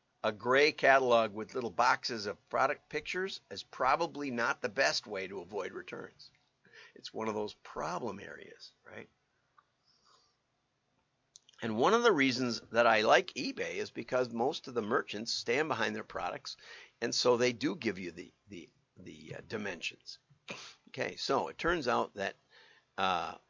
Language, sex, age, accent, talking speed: English, male, 50-69, American, 160 wpm